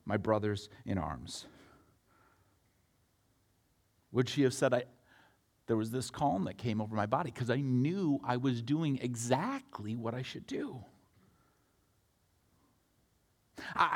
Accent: American